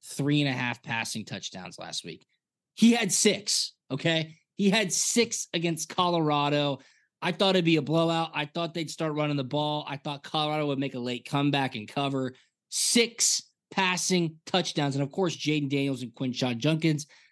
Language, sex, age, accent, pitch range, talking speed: English, male, 20-39, American, 135-170 Hz, 175 wpm